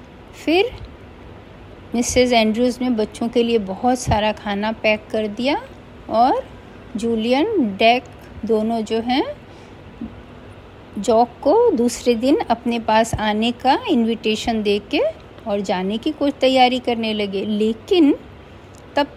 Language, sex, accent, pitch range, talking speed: Hindi, female, native, 220-275 Hz, 120 wpm